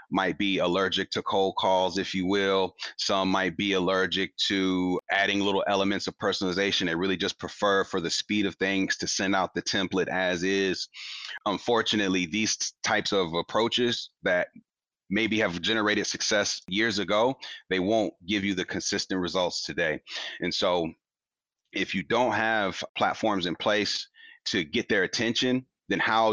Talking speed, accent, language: 160 wpm, American, English